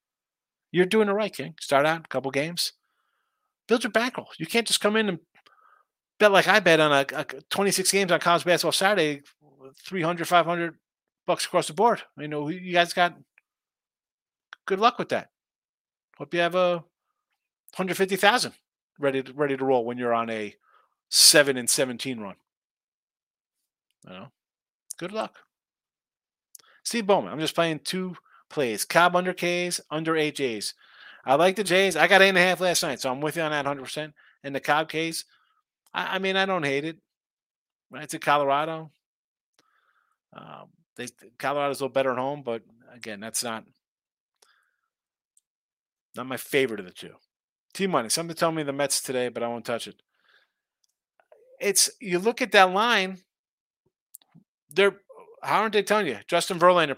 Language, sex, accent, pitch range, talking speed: English, male, American, 145-190 Hz, 170 wpm